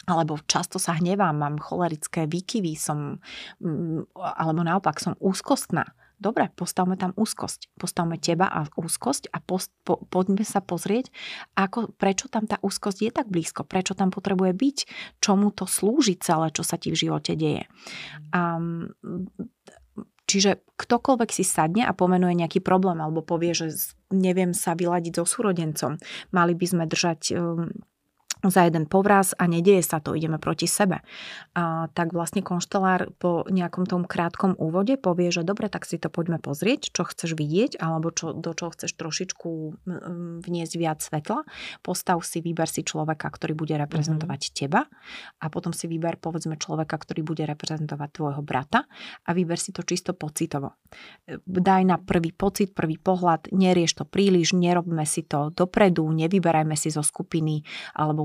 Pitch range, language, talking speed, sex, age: 165-190 Hz, Slovak, 155 wpm, female, 30-49